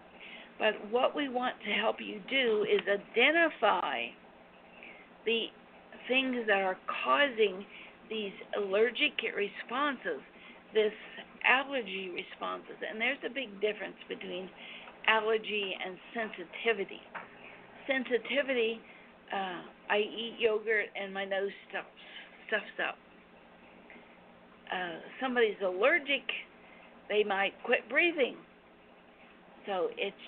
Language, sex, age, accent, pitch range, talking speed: English, female, 50-69, American, 200-250 Hz, 100 wpm